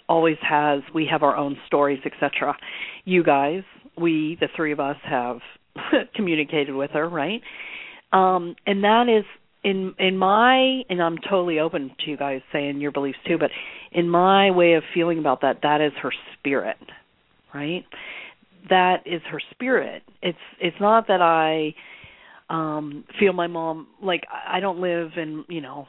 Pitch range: 150-175 Hz